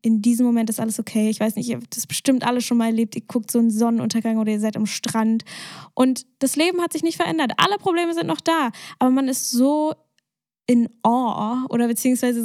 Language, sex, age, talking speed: German, female, 10-29, 225 wpm